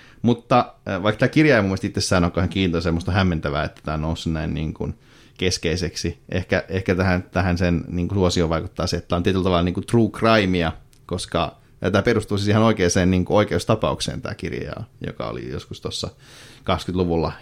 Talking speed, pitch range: 185 wpm, 90-115 Hz